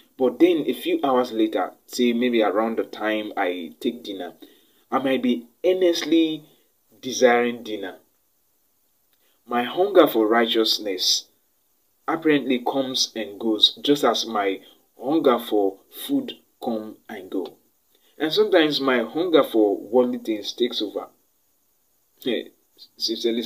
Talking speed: 125 wpm